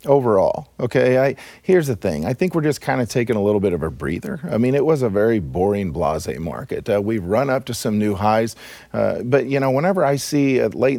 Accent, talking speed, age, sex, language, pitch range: American, 240 wpm, 40-59, male, English, 105-135 Hz